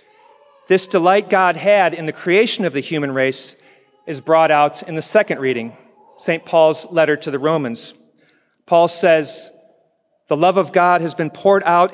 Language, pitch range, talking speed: English, 140-175 Hz, 170 wpm